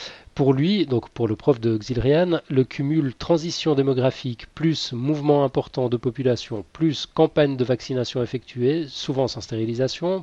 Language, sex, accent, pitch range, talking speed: French, male, French, 120-145 Hz, 145 wpm